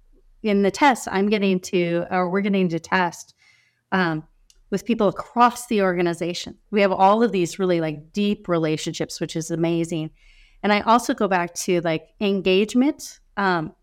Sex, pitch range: female, 175-215 Hz